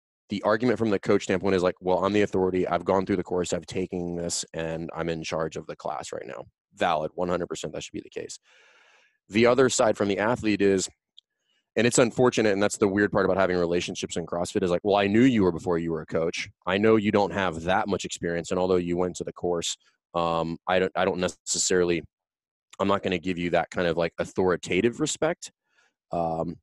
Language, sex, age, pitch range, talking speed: English, male, 20-39, 85-100 Hz, 230 wpm